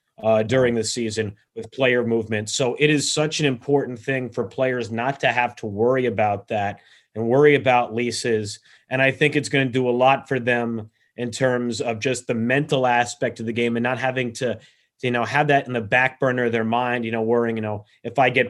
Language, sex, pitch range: English, male, 115-130 Hz